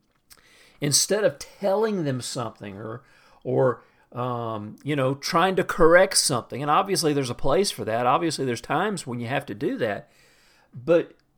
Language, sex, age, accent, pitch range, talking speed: English, male, 50-69, American, 130-170 Hz, 165 wpm